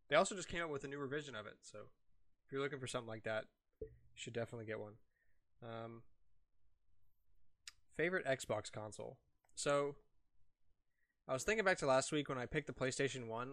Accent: American